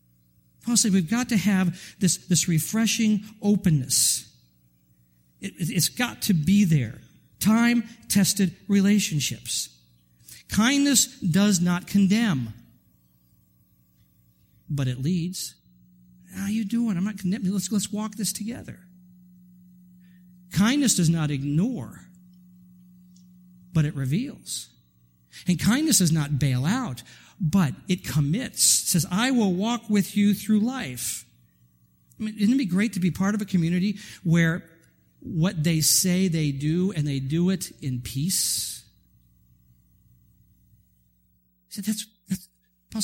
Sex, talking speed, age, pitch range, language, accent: male, 115 wpm, 50-69, 125-200 Hz, English, American